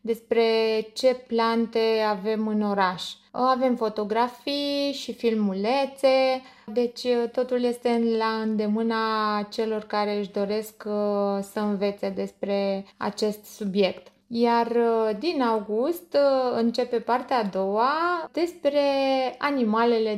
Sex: female